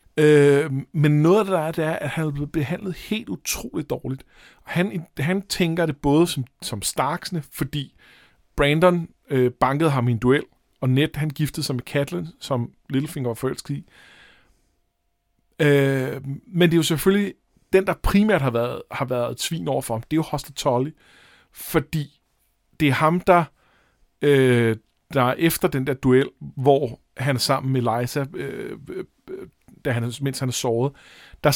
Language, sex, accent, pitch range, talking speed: Danish, male, native, 130-160 Hz, 175 wpm